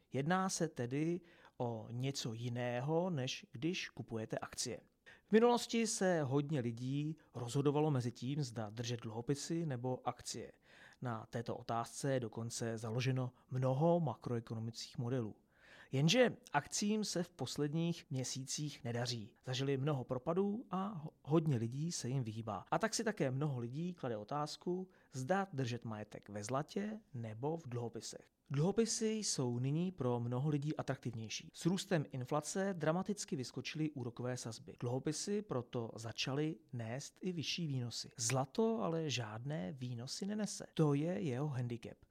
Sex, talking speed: male, 135 wpm